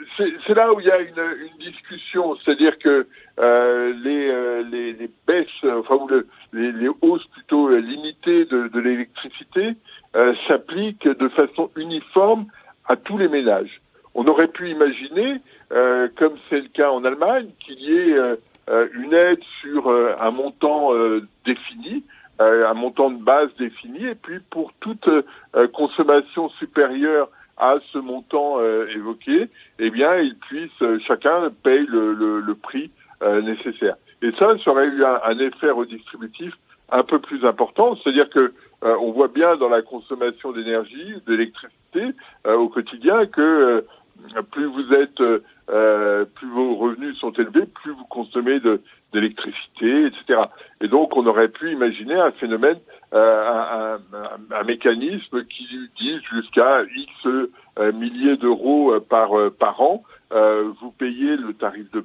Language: French